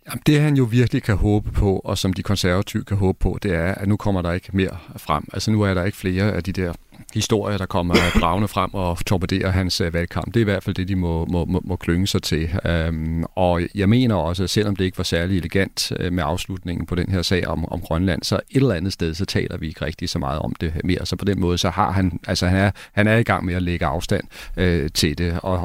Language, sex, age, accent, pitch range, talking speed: Danish, male, 40-59, native, 90-105 Hz, 260 wpm